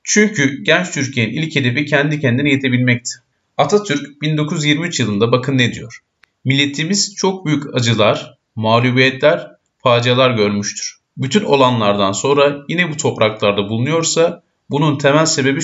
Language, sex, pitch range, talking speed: Turkish, male, 120-155 Hz, 120 wpm